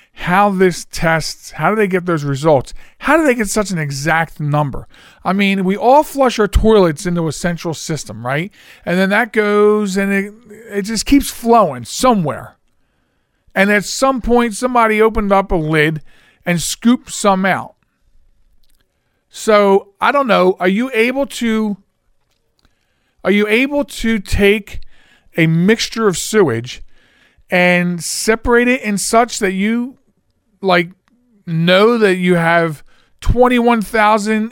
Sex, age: male, 50-69